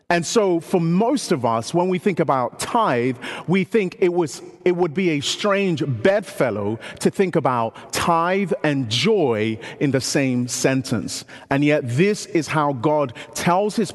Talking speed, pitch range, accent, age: 170 wpm, 140-195 Hz, British, 30-49